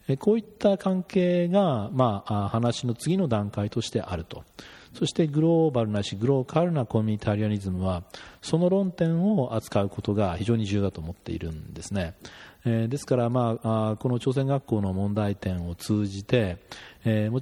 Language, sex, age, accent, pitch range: Japanese, male, 40-59, native, 100-135 Hz